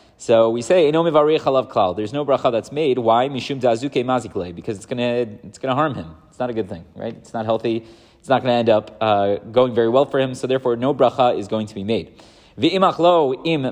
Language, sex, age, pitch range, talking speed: English, male, 30-49, 110-130 Hz, 235 wpm